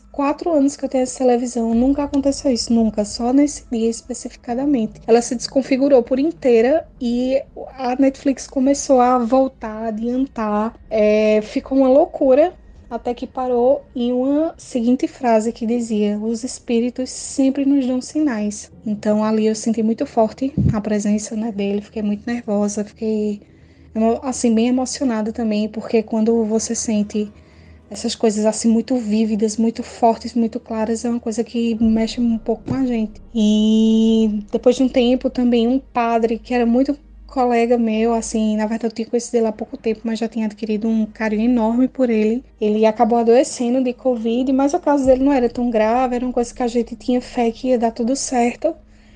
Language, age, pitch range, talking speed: Portuguese, 10-29, 225-255 Hz, 180 wpm